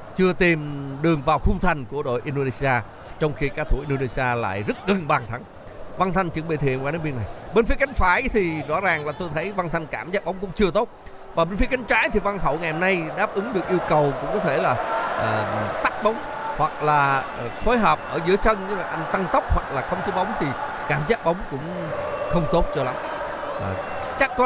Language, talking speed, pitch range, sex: Vietnamese, 240 wpm, 135-190 Hz, male